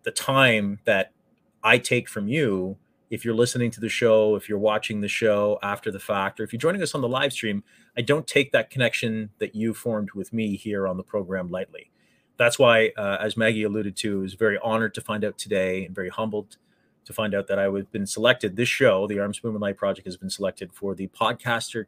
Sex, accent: male, American